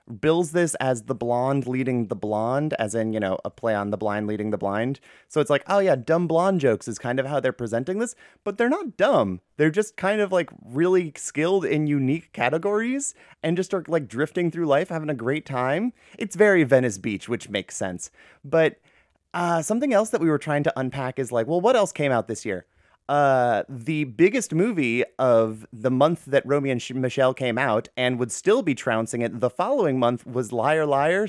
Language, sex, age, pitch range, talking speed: English, male, 30-49, 115-170 Hz, 215 wpm